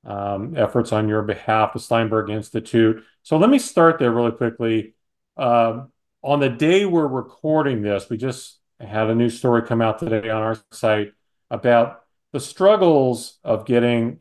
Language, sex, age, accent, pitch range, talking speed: English, male, 40-59, American, 115-135 Hz, 165 wpm